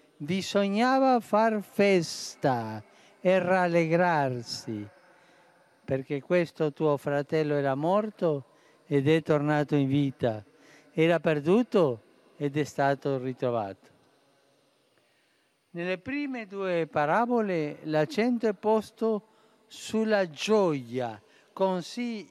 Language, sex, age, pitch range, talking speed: Italian, male, 50-69, 140-190 Hz, 85 wpm